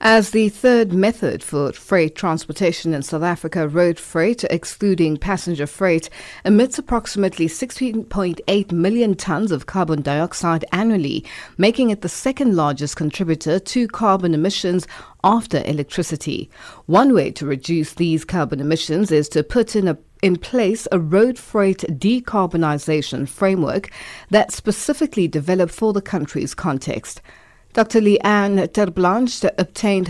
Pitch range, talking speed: 160-205 Hz, 130 wpm